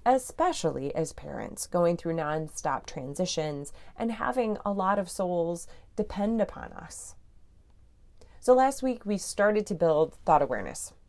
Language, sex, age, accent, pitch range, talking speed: English, female, 30-49, American, 135-195 Hz, 135 wpm